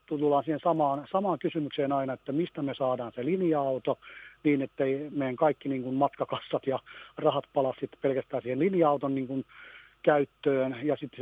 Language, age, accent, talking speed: Finnish, 40-59, native, 150 wpm